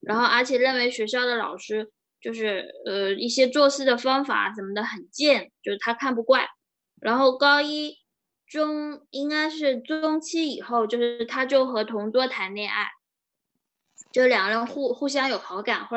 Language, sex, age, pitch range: Chinese, female, 20-39, 215-270 Hz